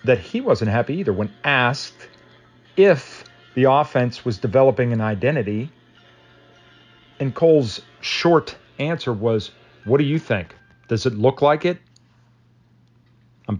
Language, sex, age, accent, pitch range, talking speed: English, male, 40-59, American, 100-120 Hz, 130 wpm